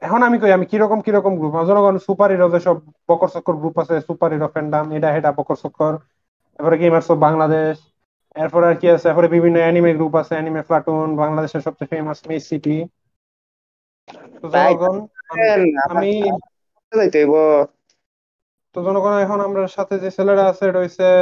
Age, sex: 30-49, male